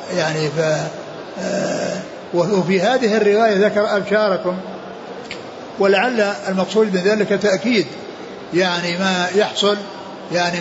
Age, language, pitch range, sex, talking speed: 60-79, Arabic, 180-205 Hz, male, 90 wpm